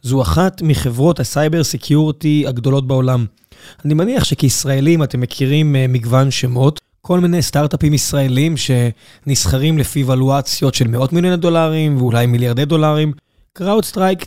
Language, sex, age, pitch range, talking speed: Hebrew, male, 20-39, 130-150 Hz, 120 wpm